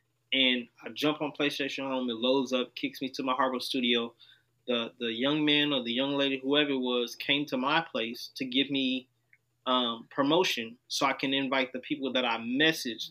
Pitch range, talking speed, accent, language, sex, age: 120-145 Hz, 200 wpm, American, English, male, 20-39